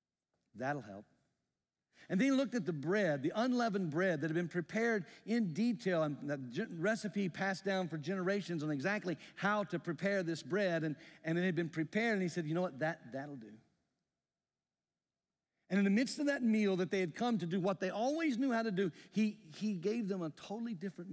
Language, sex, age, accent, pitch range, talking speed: English, male, 50-69, American, 130-190 Hz, 205 wpm